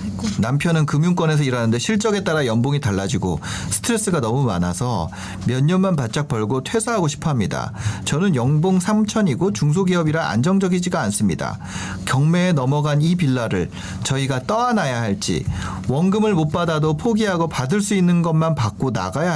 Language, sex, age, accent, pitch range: Korean, male, 40-59, native, 120-180 Hz